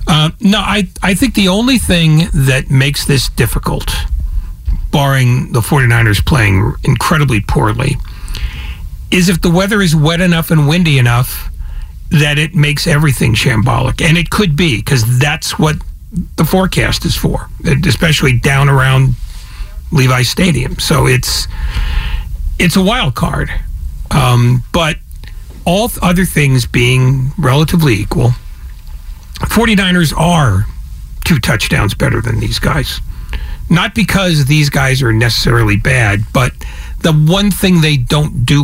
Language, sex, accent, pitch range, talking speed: English, male, American, 100-155 Hz, 135 wpm